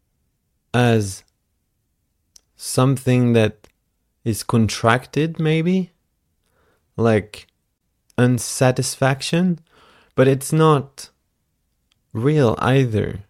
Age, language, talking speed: 30-49, English, 60 wpm